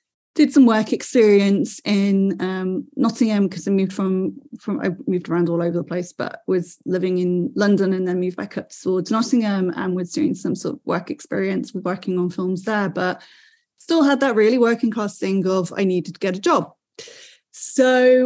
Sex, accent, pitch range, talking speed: female, British, 185-220 Hz, 195 wpm